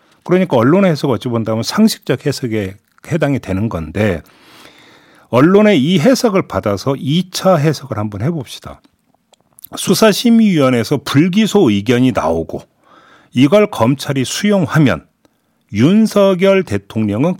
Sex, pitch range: male, 120-180 Hz